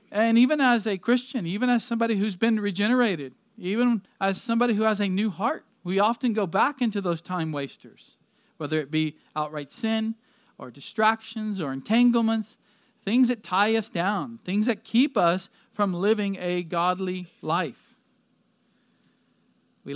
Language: English